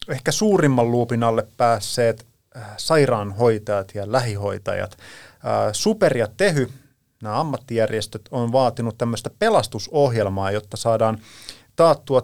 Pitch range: 105-130 Hz